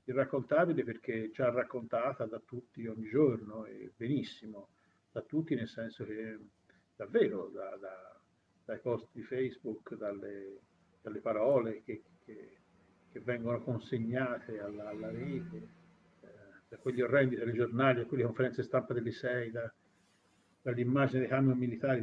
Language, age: Italian, 50-69